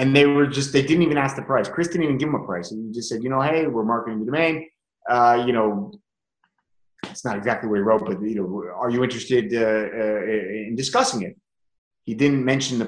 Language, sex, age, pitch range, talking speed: English, male, 30-49, 125-165 Hz, 240 wpm